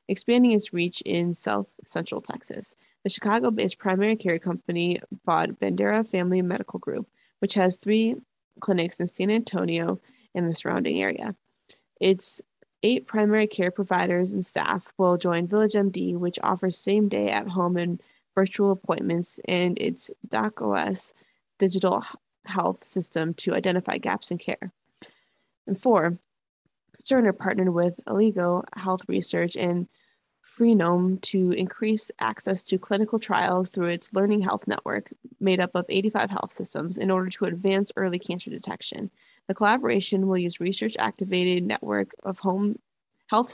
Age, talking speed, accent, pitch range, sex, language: 20-39, 140 wpm, American, 180-210 Hz, female, English